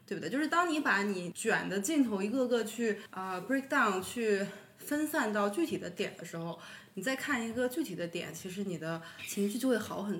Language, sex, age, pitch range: Chinese, female, 20-39, 200-270 Hz